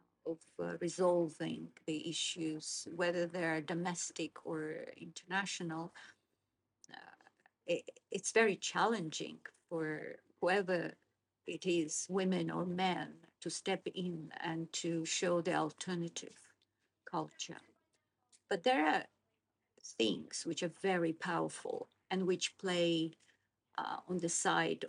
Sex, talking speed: female, 115 wpm